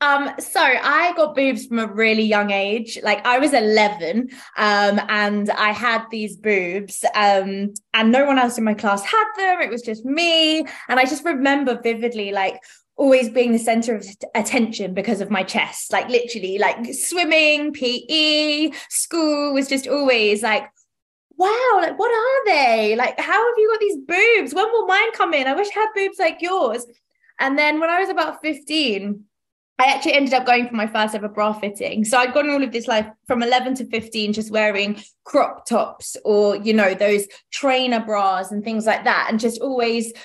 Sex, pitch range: female, 210-290 Hz